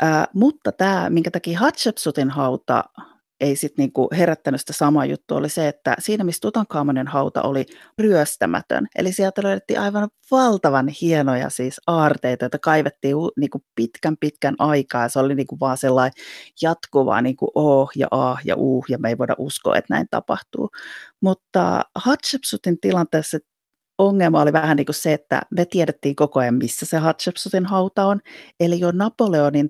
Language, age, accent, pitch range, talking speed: Finnish, 30-49, native, 135-175 Hz, 160 wpm